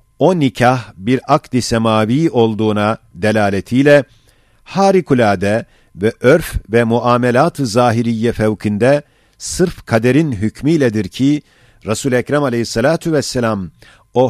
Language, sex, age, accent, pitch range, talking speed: Turkish, male, 50-69, native, 115-140 Hz, 95 wpm